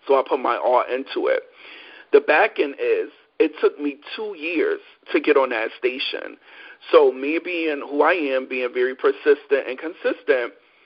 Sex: male